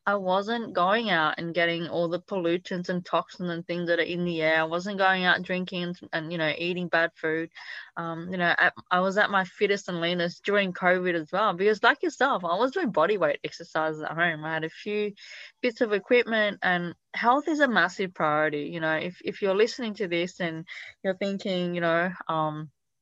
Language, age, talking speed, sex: English, 20-39, 215 wpm, female